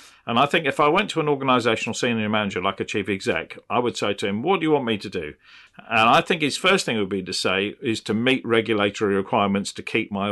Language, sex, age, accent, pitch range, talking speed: English, male, 40-59, British, 100-125 Hz, 260 wpm